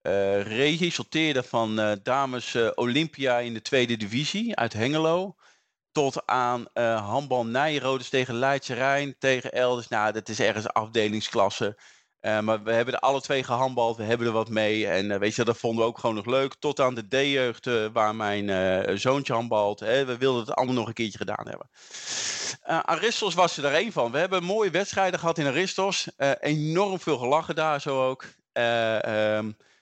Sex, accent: male, Dutch